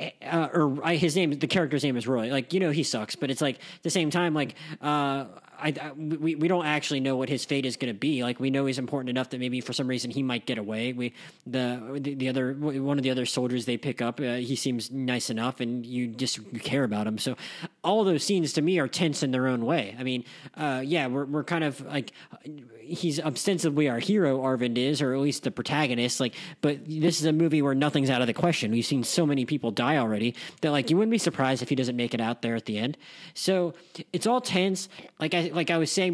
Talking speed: 255 wpm